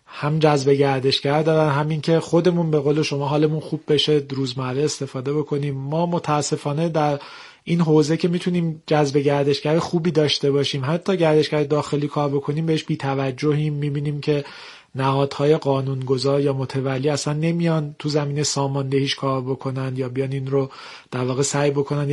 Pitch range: 140-155 Hz